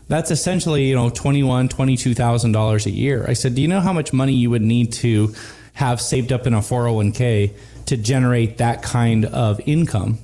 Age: 20-39